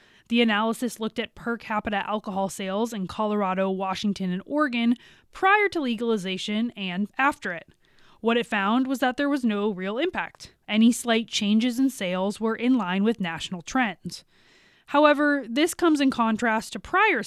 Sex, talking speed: female, 165 wpm